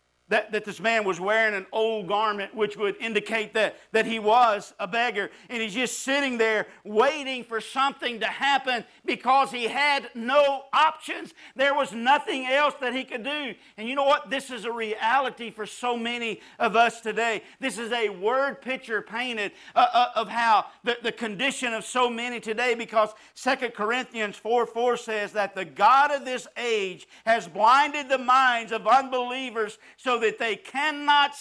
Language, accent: English, American